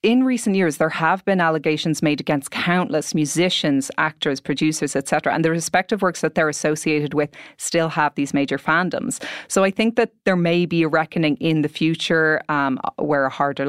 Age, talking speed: 30-49, 190 wpm